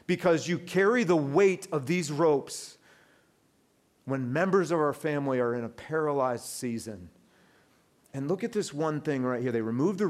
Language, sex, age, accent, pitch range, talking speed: English, male, 40-59, American, 115-150 Hz, 170 wpm